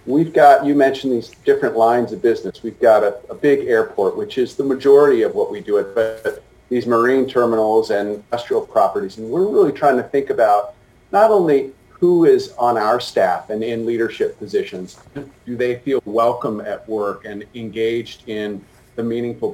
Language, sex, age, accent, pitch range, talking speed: English, male, 40-59, American, 110-160 Hz, 185 wpm